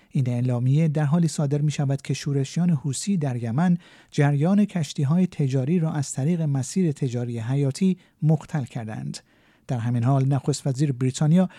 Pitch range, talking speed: 135-175 Hz, 155 wpm